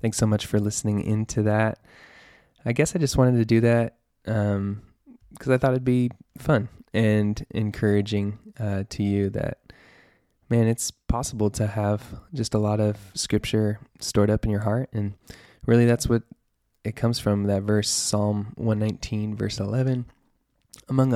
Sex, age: male, 20-39